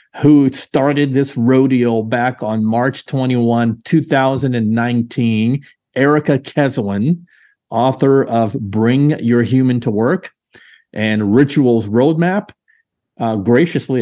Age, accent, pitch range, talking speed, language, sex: 50-69, American, 120-150 Hz, 100 wpm, English, male